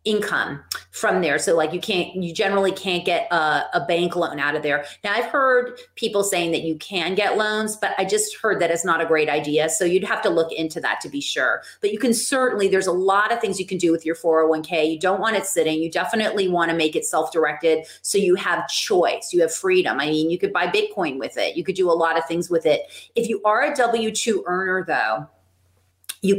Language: English